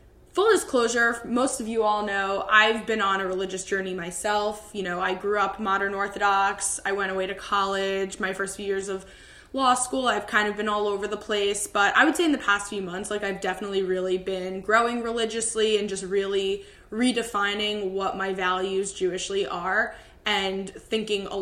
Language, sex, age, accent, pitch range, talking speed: English, female, 20-39, American, 195-220 Hz, 195 wpm